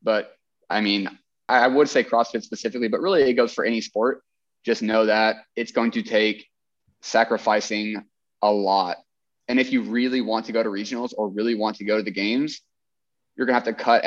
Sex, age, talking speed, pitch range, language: male, 20-39, 205 wpm, 105-120 Hz, English